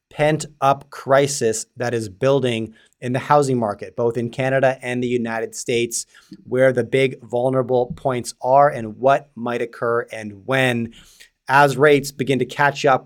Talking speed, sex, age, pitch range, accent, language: 160 wpm, male, 30-49, 125-140 Hz, American, English